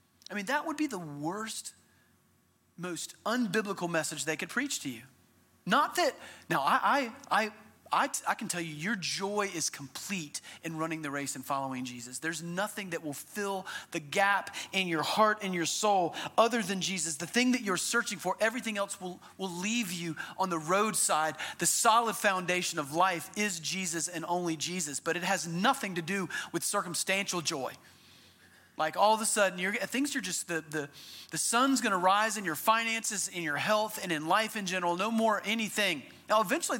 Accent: American